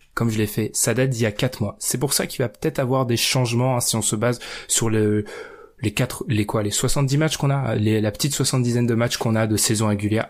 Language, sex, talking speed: French, male, 275 wpm